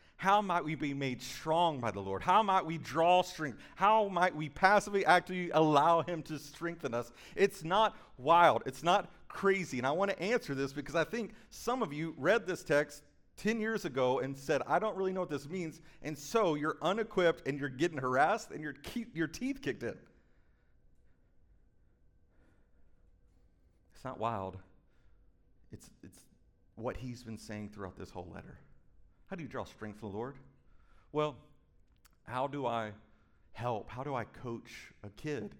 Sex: male